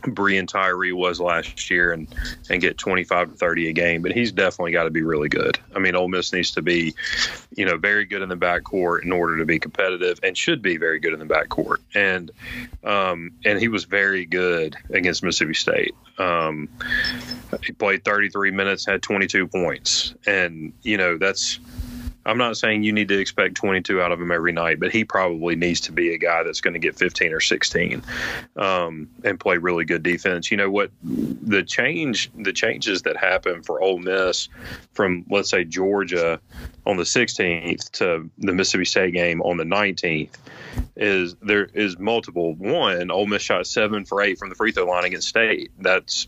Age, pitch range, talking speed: 30-49, 85-100 Hz, 200 wpm